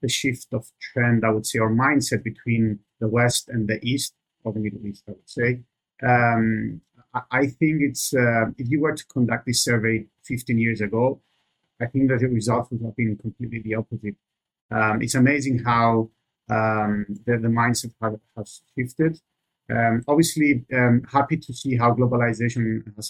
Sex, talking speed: male, 175 wpm